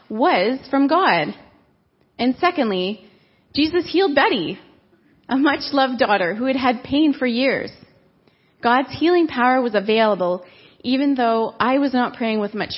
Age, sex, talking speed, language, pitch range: 30-49, female, 145 wpm, English, 205-265 Hz